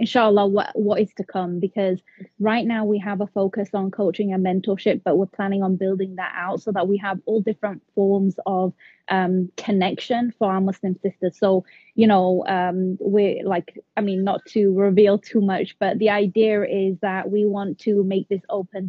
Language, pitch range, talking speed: English, 185-210 Hz, 195 wpm